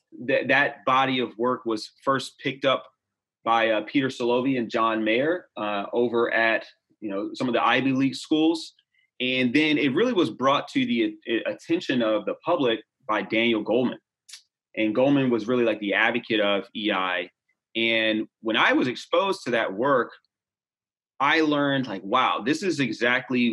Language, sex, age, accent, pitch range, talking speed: English, male, 30-49, American, 115-180 Hz, 170 wpm